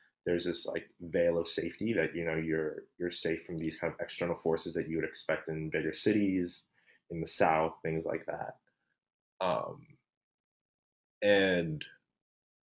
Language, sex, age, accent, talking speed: English, male, 20-39, American, 155 wpm